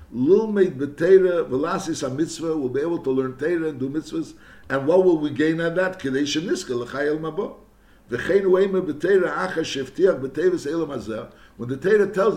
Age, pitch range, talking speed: 60-79, 145-195 Hz, 185 wpm